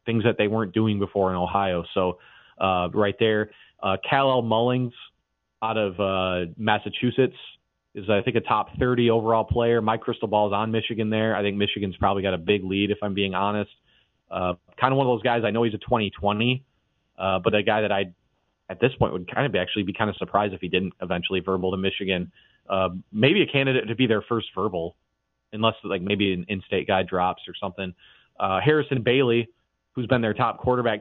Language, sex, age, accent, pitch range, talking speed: English, male, 30-49, American, 95-115 Hz, 210 wpm